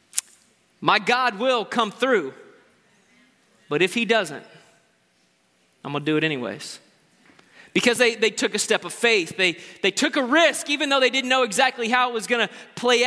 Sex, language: male, English